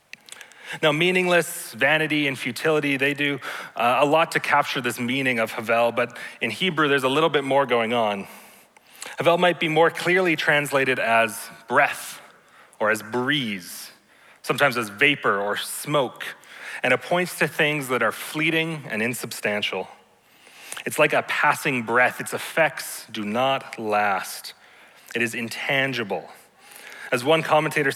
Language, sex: English, male